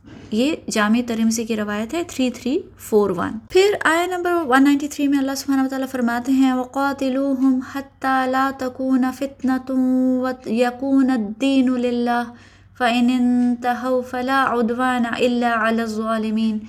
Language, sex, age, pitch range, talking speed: Urdu, female, 20-39, 225-270 Hz, 95 wpm